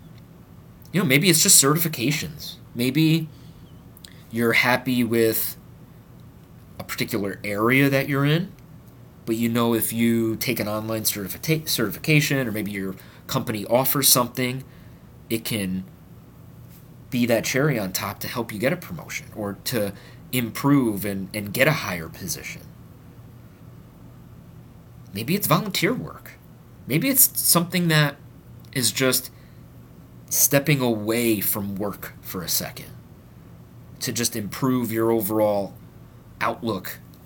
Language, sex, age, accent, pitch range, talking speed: English, male, 30-49, American, 110-140 Hz, 120 wpm